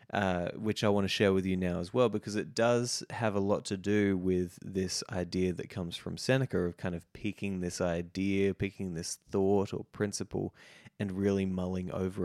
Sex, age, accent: male, 20-39, Australian